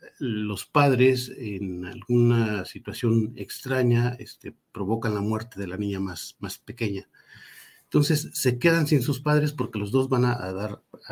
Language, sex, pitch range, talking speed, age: Spanish, male, 105-135 Hz, 150 wpm, 50-69